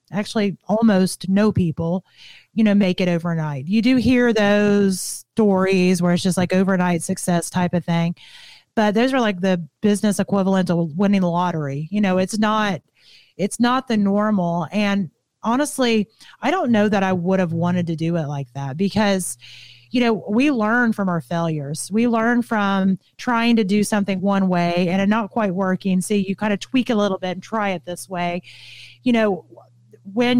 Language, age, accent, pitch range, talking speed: English, 30-49, American, 175-225 Hz, 190 wpm